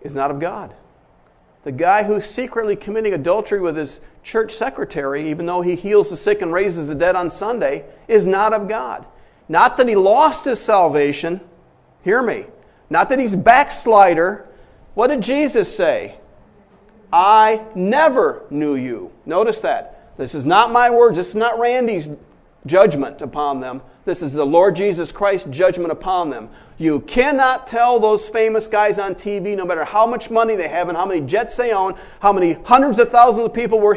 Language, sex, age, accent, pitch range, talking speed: English, male, 50-69, American, 180-240 Hz, 180 wpm